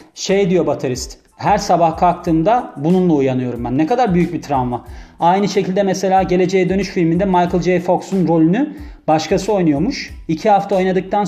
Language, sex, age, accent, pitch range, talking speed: Turkish, male, 30-49, native, 155-190 Hz, 155 wpm